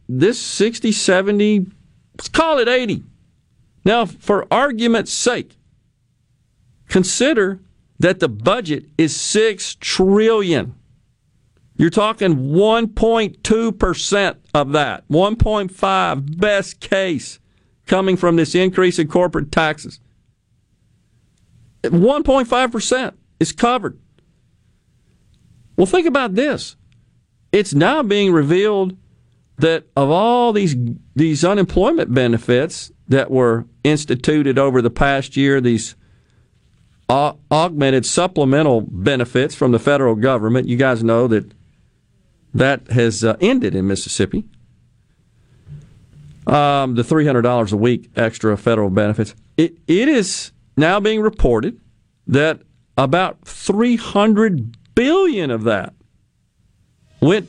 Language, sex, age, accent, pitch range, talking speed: English, male, 50-69, American, 125-200 Hz, 100 wpm